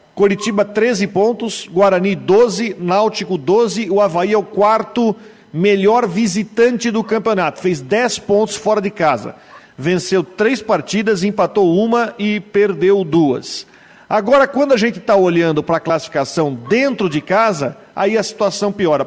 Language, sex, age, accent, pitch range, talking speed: Portuguese, male, 50-69, Brazilian, 180-220 Hz, 145 wpm